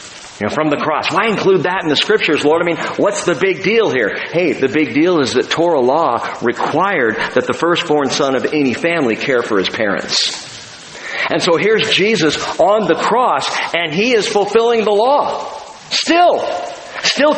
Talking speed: 185 wpm